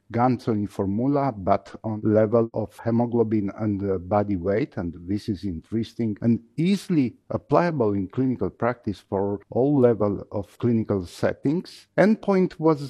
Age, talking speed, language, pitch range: 50-69, 130 wpm, English, 105-130 Hz